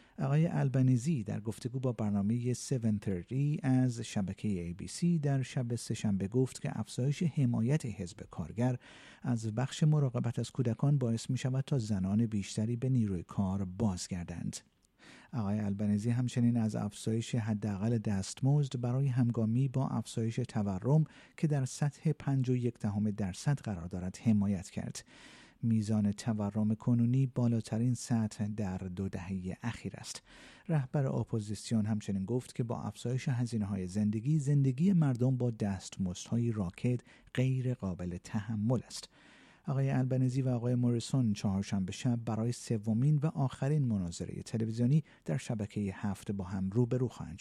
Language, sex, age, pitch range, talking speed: Persian, male, 50-69, 105-130 Hz, 135 wpm